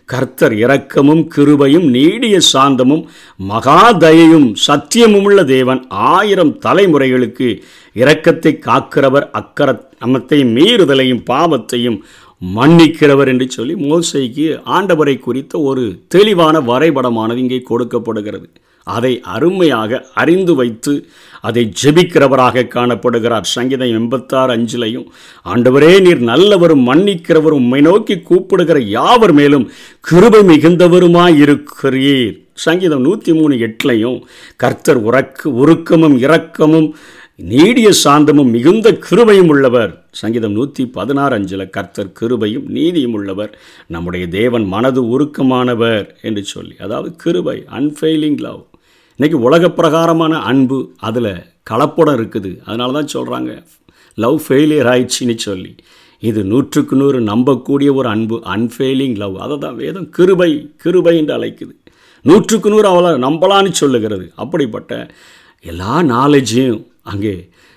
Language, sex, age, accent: Tamil, male, 50-69, native